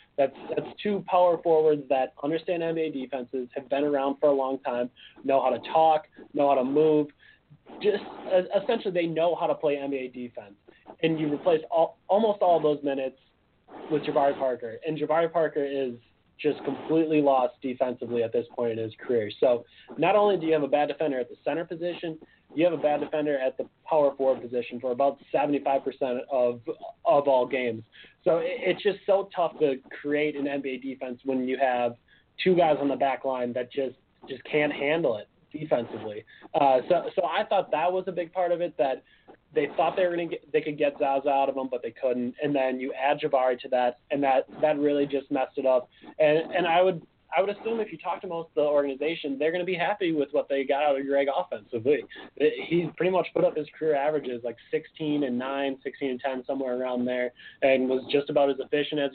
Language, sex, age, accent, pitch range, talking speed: English, male, 30-49, American, 135-165 Hz, 215 wpm